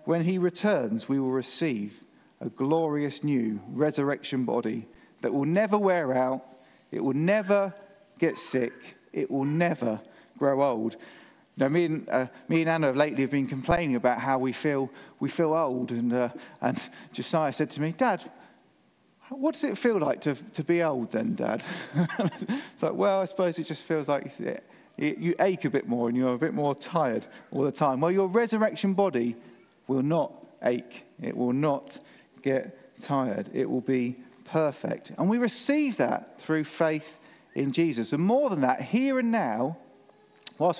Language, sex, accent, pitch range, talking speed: English, male, British, 135-200 Hz, 180 wpm